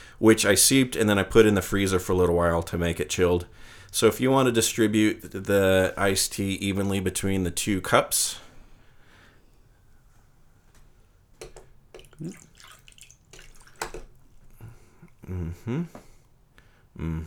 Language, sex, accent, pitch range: English, male, American, 90-115 Hz